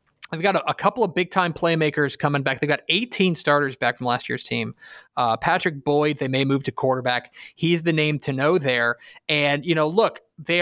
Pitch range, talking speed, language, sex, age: 145-180 Hz, 220 wpm, English, male, 30-49